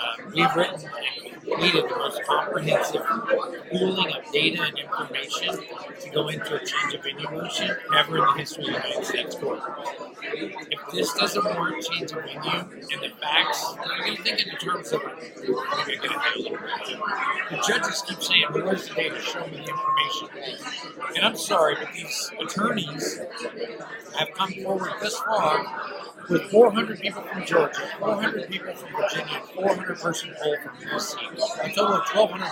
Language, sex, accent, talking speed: English, male, American, 175 wpm